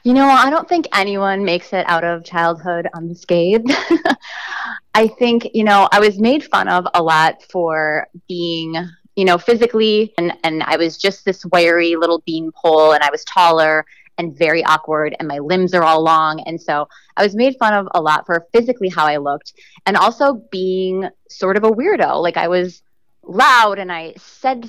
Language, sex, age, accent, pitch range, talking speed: English, female, 20-39, American, 165-210 Hz, 190 wpm